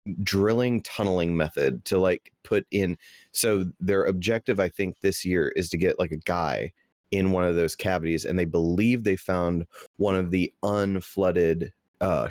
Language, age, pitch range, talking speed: English, 30-49, 85-100 Hz, 170 wpm